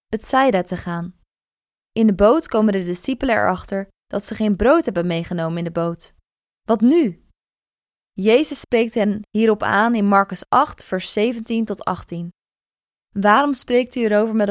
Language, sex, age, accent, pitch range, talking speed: Dutch, female, 20-39, Dutch, 200-245 Hz, 155 wpm